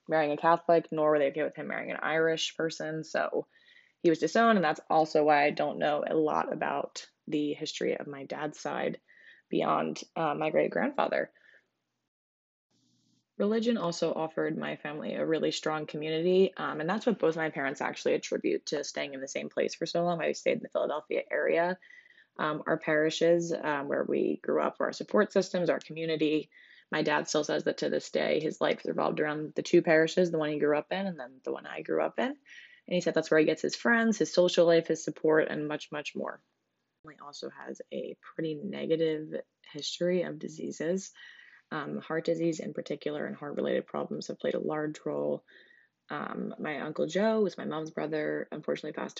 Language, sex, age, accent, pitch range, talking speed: English, female, 20-39, American, 150-180 Hz, 200 wpm